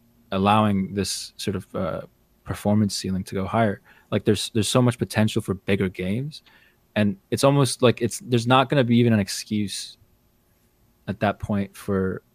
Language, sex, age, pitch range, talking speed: English, male, 20-39, 95-115 Hz, 170 wpm